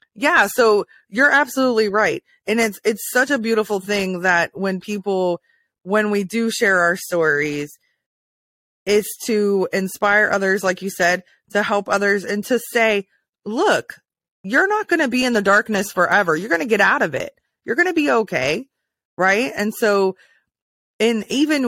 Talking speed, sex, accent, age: 170 wpm, female, American, 20-39